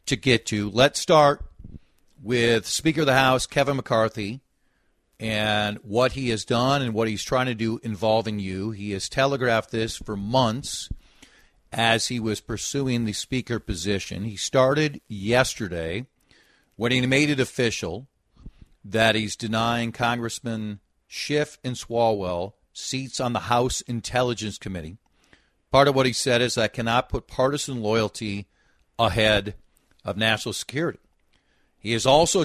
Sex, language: male, English